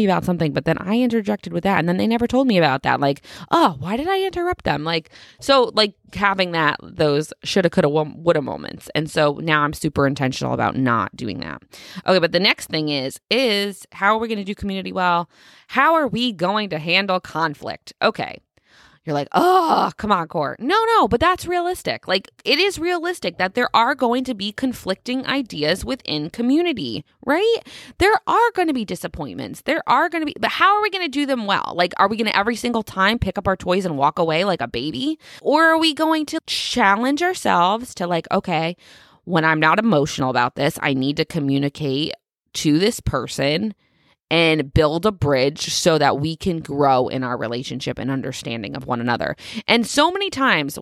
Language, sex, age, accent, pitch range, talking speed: English, female, 20-39, American, 155-250 Hz, 205 wpm